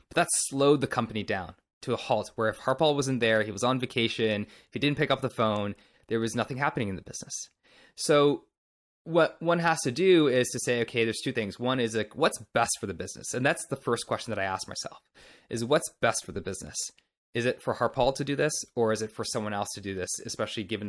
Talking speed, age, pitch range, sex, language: 245 wpm, 20-39, 110-135 Hz, male, English